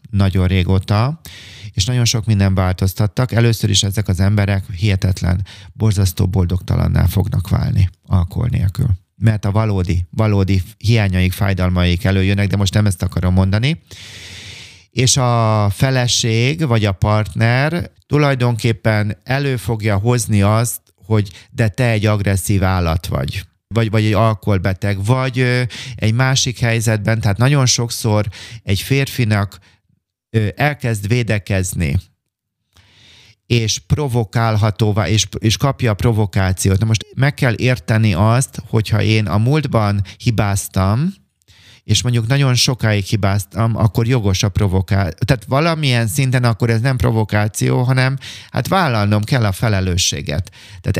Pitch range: 100-120 Hz